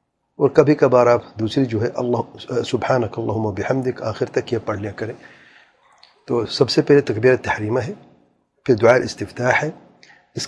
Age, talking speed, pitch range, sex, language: 50-69, 145 wpm, 110-130 Hz, male, English